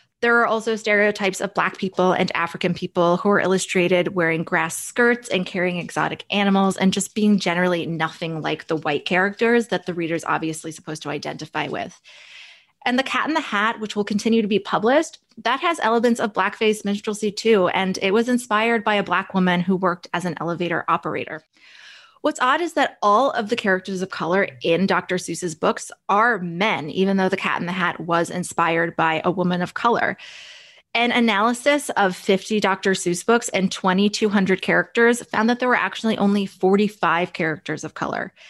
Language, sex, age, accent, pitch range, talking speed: English, female, 20-39, American, 175-225 Hz, 185 wpm